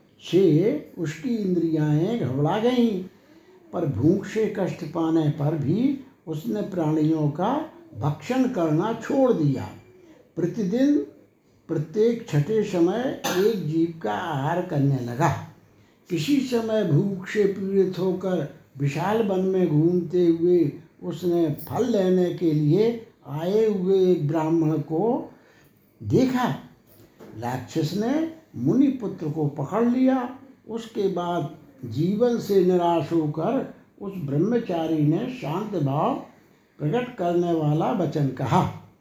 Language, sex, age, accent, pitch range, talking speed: Hindi, male, 60-79, native, 160-210 Hz, 110 wpm